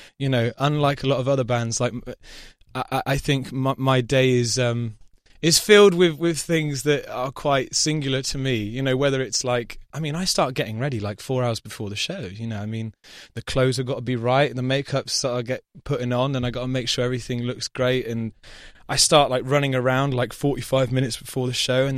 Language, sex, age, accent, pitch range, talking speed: English, male, 20-39, British, 120-140 Hz, 235 wpm